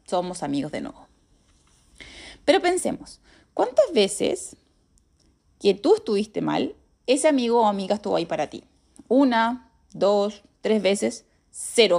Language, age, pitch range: Spanish, 20-39, 195-260 Hz